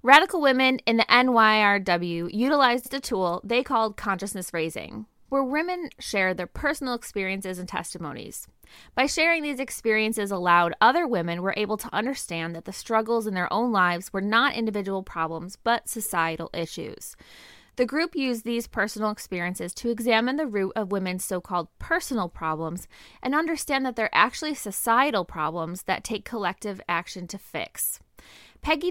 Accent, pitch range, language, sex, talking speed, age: American, 185-250 Hz, English, female, 155 wpm, 20-39